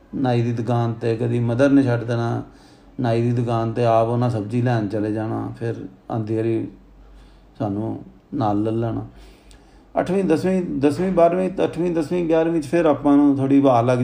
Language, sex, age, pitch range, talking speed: Punjabi, male, 40-59, 120-145 Hz, 165 wpm